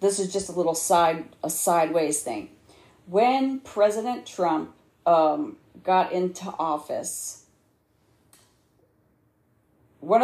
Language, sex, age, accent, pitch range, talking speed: English, female, 40-59, American, 170-205 Hz, 100 wpm